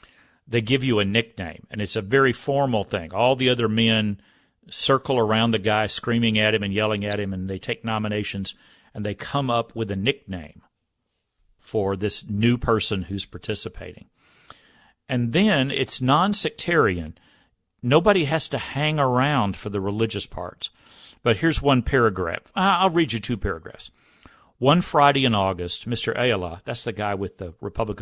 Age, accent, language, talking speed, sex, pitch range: 50-69, American, English, 165 wpm, male, 100-125 Hz